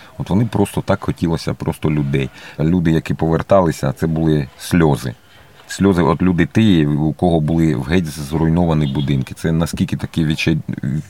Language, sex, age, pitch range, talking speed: Ukrainian, male, 40-59, 80-100 Hz, 150 wpm